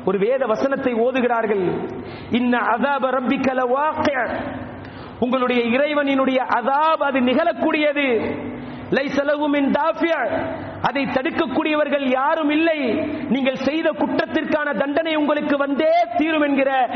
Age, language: 40-59, Tamil